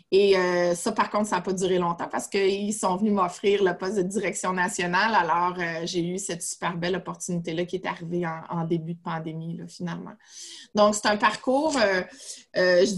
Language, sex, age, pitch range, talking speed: French, female, 30-49, 175-205 Hz, 205 wpm